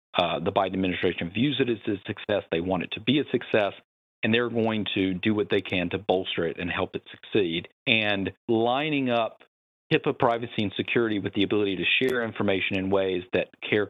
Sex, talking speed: male, 205 wpm